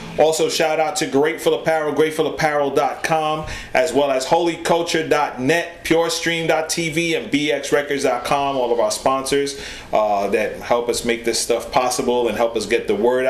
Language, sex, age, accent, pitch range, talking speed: English, male, 30-49, American, 120-150 Hz, 145 wpm